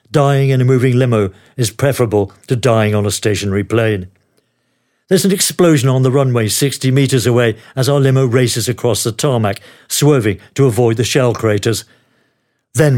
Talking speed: 165 wpm